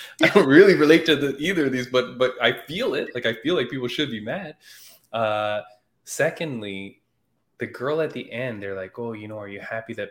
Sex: male